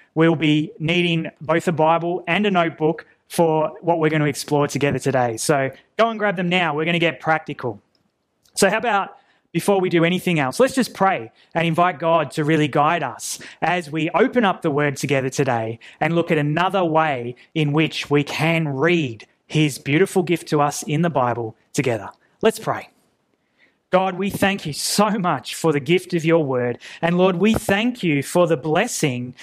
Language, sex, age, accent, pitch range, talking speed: English, male, 20-39, Australian, 155-185 Hz, 195 wpm